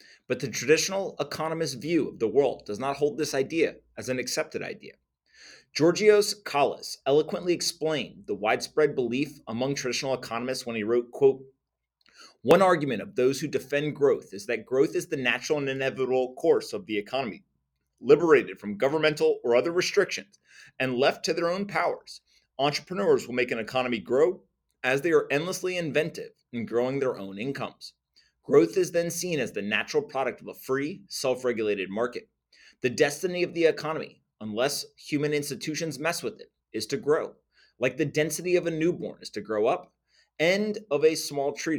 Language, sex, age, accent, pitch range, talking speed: English, male, 30-49, American, 130-180 Hz, 170 wpm